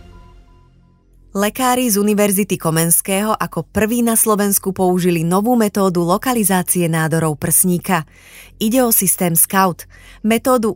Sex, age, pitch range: female, 30-49, 170-220 Hz